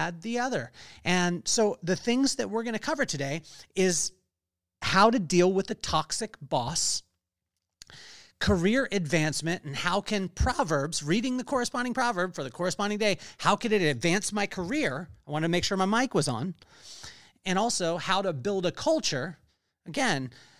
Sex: male